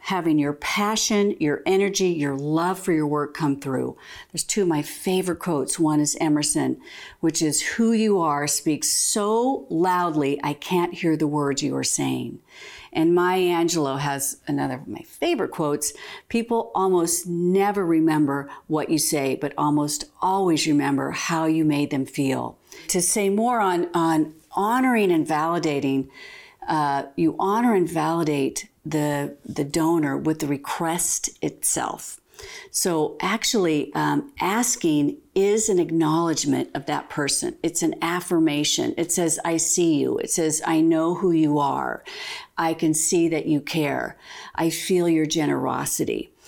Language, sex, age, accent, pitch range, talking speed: English, female, 50-69, American, 150-185 Hz, 150 wpm